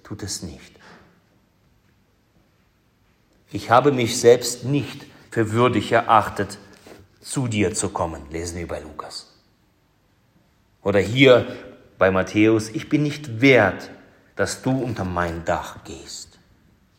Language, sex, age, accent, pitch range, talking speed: German, male, 40-59, German, 100-155 Hz, 115 wpm